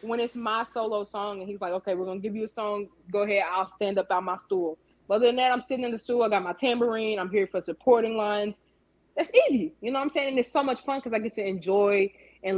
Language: English